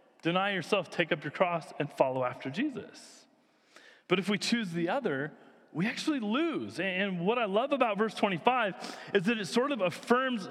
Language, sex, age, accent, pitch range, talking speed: English, male, 30-49, American, 185-245 Hz, 185 wpm